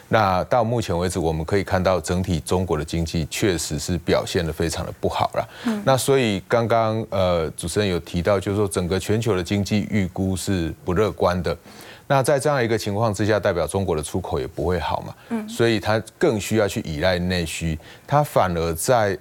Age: 30-49